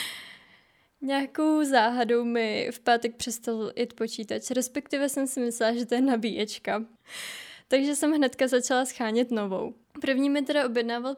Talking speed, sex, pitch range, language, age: 140 wpm, female, 230-275 Hz, Czech, 20-39